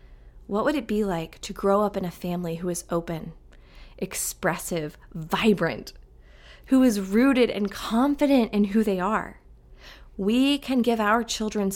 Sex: female